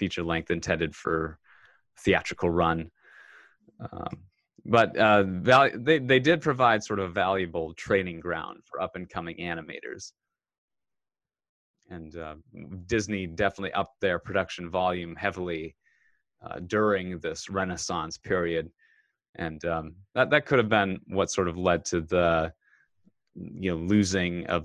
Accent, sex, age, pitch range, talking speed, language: American, male, 30-49, 85-95 Hz, 130 wpm, English